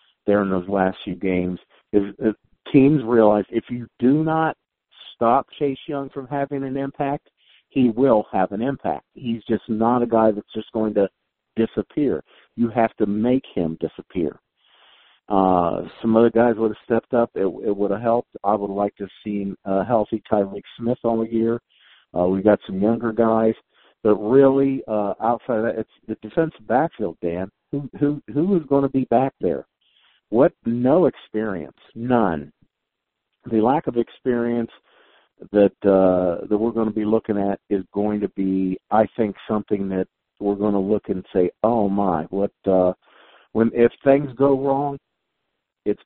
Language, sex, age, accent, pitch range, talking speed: English, male, 50-69, American, 100-120 Hz, 175 wpm